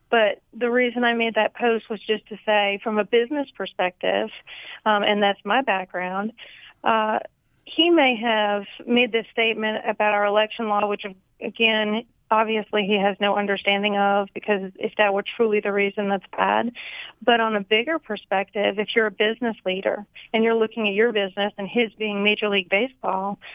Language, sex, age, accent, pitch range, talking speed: English, female, 40-59, American, 205-235 Hz, 180 wpm